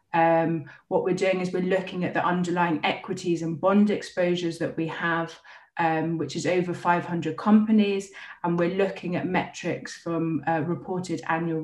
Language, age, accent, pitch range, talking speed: English, 30-49, British, 165-185 Hz, 165 wpm